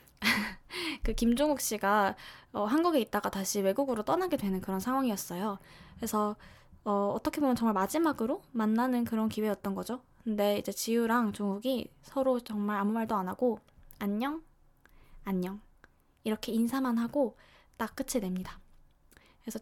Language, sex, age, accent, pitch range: Korean, female, 20-39, native, 200-250 Hz